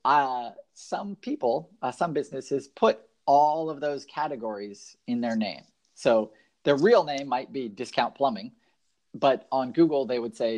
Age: 30-49